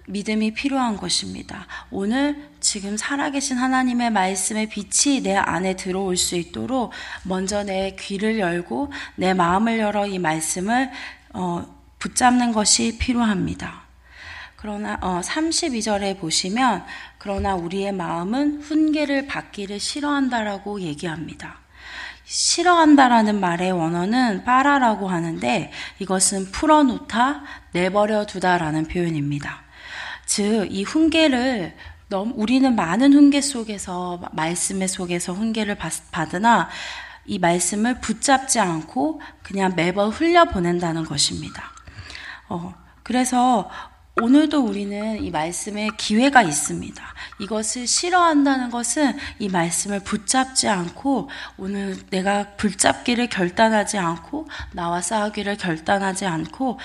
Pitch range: 185-255 Hz